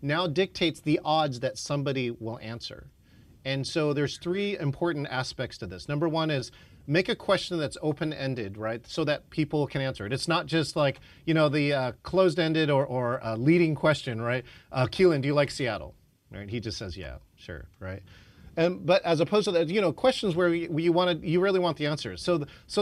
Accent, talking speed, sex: American, 220 wpm, male